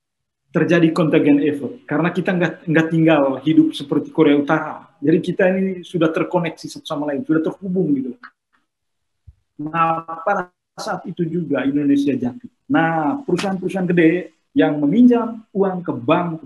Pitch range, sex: 155-195 Hz, male